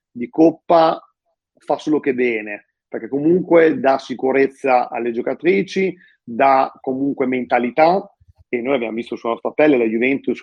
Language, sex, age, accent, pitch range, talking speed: Italian, male, 40-59, native, 125-170 Hz, 130 wpm